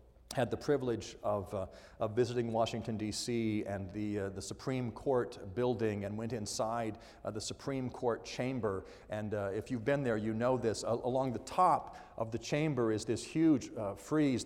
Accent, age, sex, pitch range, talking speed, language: American, 50-69, male, 105-140 Hz, 185 wpm, English